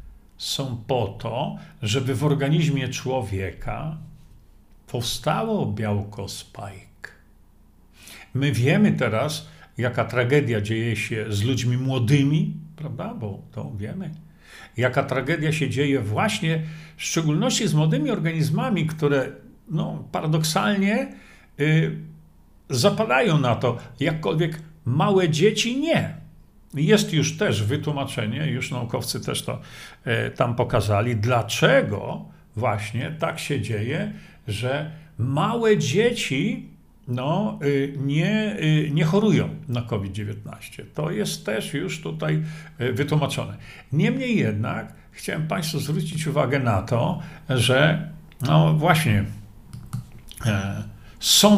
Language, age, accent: Polish, 50-69, native